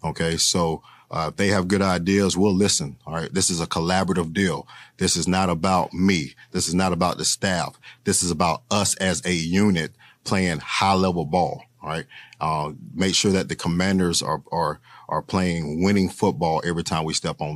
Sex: male